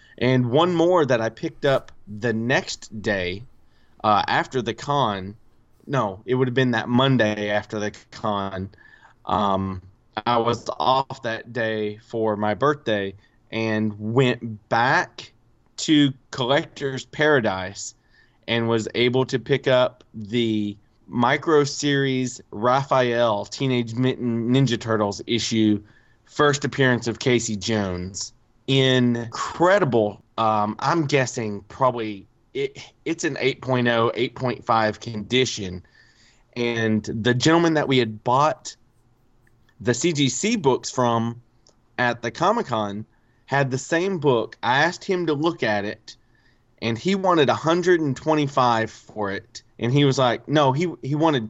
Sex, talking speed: male, 125 wpm